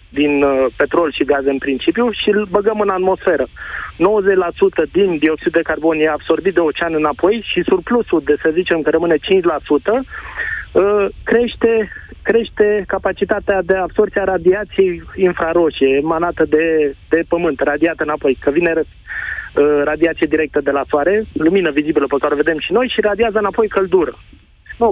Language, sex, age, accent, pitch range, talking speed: Romanian, male, 20-39, native, 160-210 Hz, 150 wpm